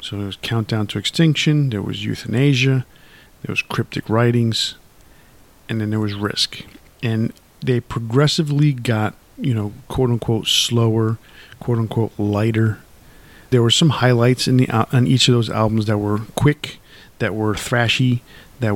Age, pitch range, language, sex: 50-69, 110-125 Hz, English, male